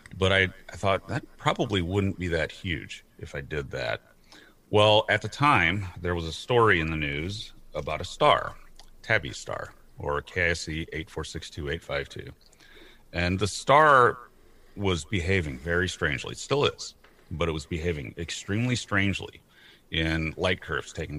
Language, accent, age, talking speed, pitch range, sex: English, American, 40-59, 155 wpm, 75-100 Hz, male